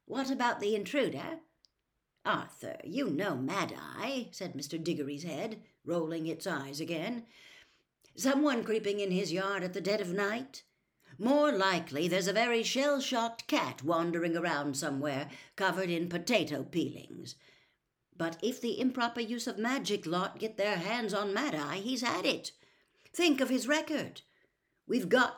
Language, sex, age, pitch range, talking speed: English, female, 60-79, 160-225 Hz, 145 wpm